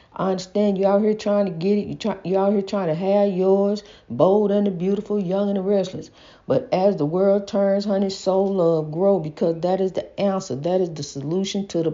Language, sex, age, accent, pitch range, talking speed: English, female, 50-69, American, 185-275 Hz, 230 wpm